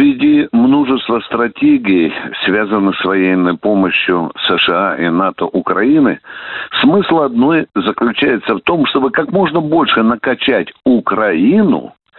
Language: Russian